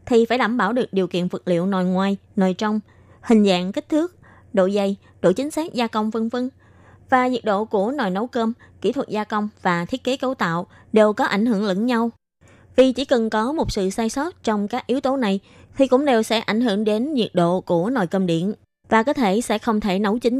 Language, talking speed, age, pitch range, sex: Vietnamese, 240 wpm, 20-39, 190-240 Hz, female